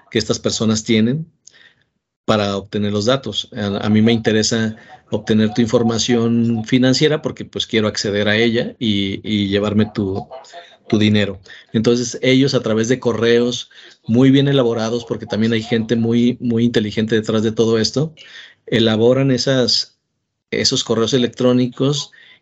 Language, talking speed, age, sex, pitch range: Spanish, 140 wpm, 40-59, male, 110-130 Hz